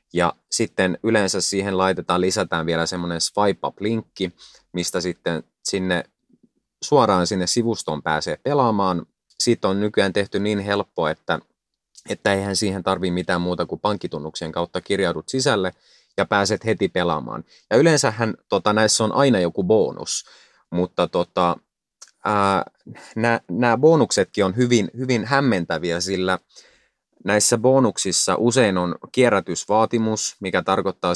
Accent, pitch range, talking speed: native, 90-110 Hz, 125 wpm